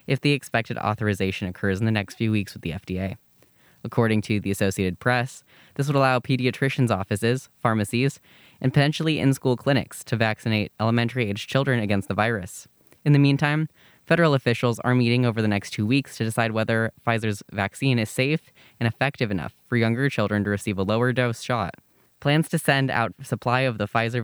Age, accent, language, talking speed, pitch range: 10-29, American, English, 180 wpm, 105-130 Hz